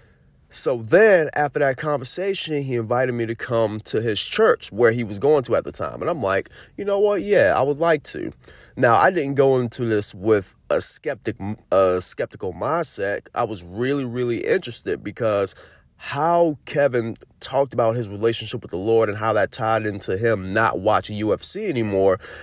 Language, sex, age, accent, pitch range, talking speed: English, male, 30-49, American, 105-130 Hz, 185 wpm